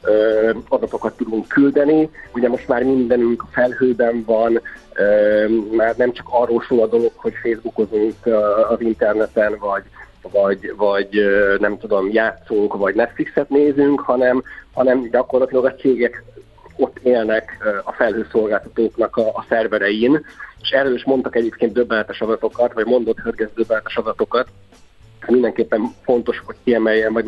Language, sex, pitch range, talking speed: Hungarian, male, 110-130 Hz, 130 wpm